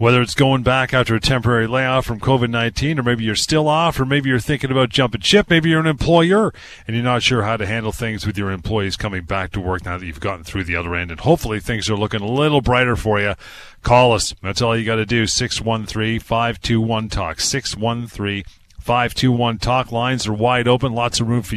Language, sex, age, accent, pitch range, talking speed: English, male, 40-59, American, 105-130 Hz, 215 wpm